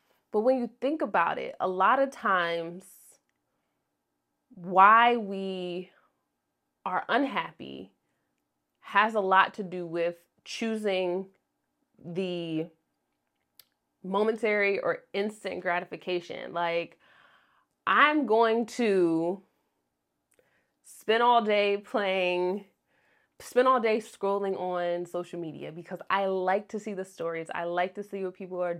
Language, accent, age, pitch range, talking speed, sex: English, American, 20-39, 170-210 Hz, 115 wpm, female